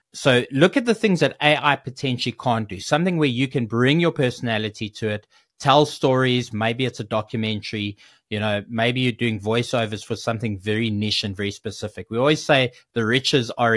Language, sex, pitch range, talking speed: English, male, 115-145 Hz, 190 wpm